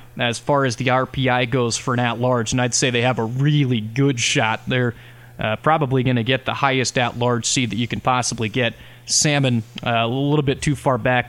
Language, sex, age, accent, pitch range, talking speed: English, male, 20-39, American, 125-150 Hz, 220 wpm